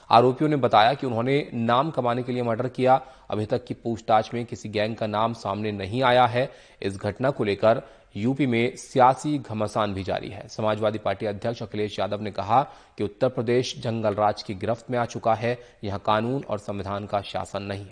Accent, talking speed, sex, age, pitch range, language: native, 200 wpm, male, 30-49, 110-135 Hz, Hindi